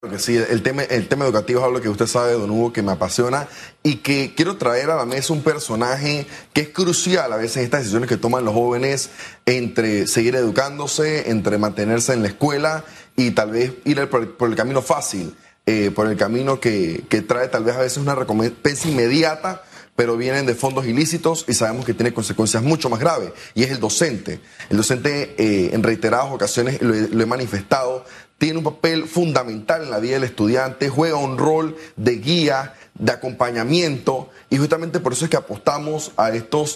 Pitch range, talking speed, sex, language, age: 120-155 Hz, 205 wpm, male, Spanish, 20-39